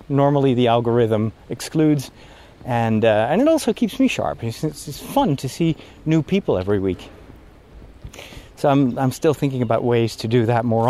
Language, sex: English, male